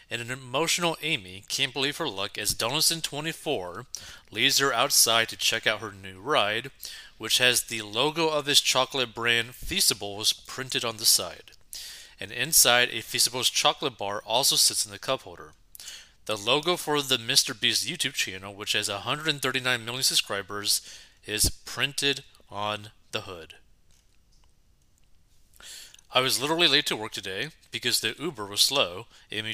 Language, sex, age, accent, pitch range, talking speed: English, male, 30-49, American, 105-140 Hz, 150 wpm